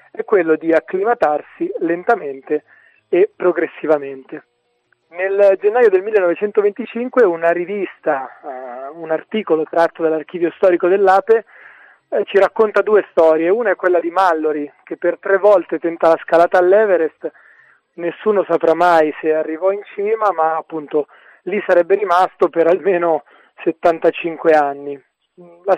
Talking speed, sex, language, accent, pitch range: 125 wpm, male, Italian, native, 160-200 Hz